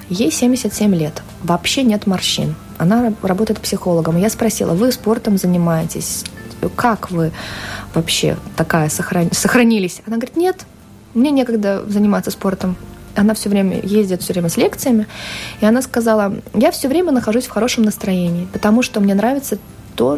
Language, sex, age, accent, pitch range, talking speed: Russian, female, 20-39, native, 175-220 Hz, 150 wpm